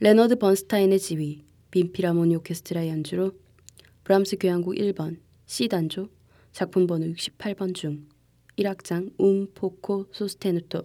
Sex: female